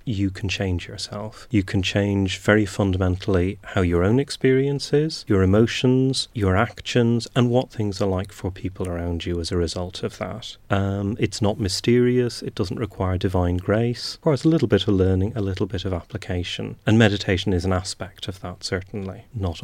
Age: 30-49